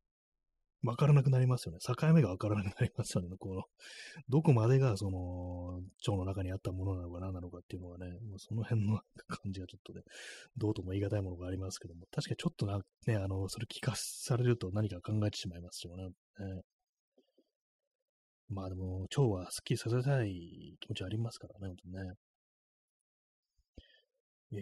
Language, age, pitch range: Japanese, 20-39, 95-125 Hz